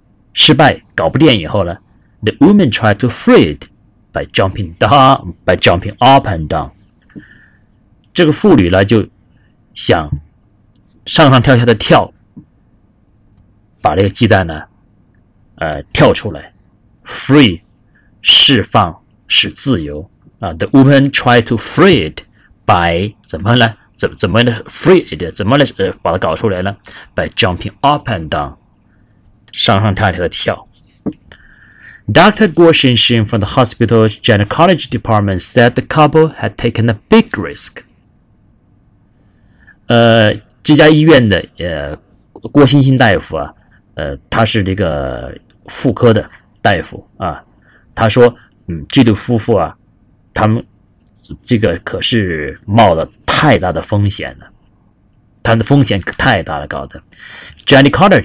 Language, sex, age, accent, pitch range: Chinese, male, 30-49, native, 100-120 Hz